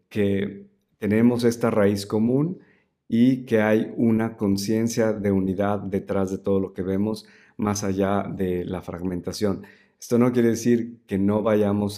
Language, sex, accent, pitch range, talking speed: Spanish, male, Mexican, 95-115 Hz, 150 wpm